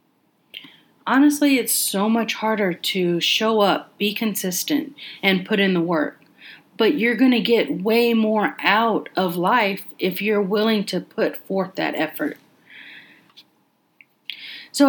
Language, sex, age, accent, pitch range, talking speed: English, female, 30-49, American, 185-240 Hz, 135 wpm